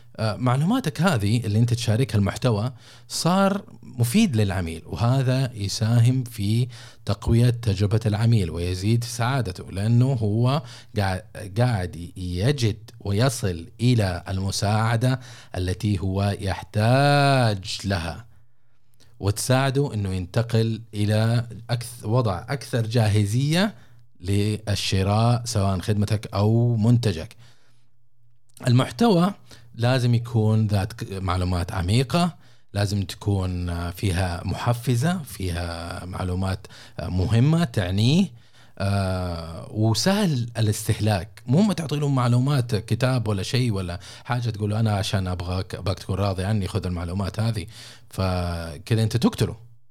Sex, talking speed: male, 95 wpm